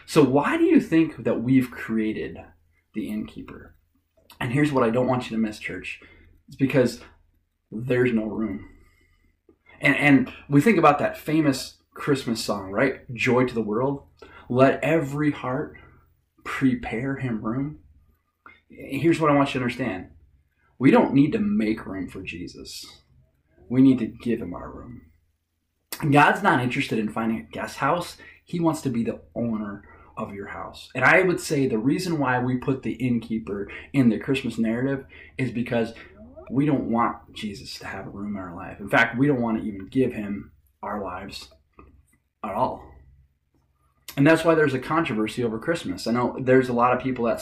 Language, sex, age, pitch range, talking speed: English, male, 20-39, 95-135 Hz, 180 wpm